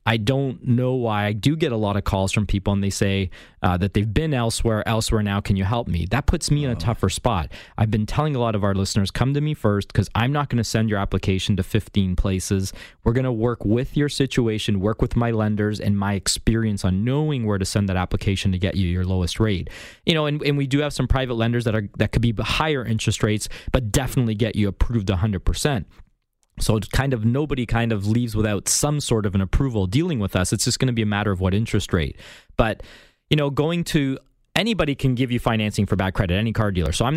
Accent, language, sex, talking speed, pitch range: American, English, male, 250 wpm, 100-125 Hz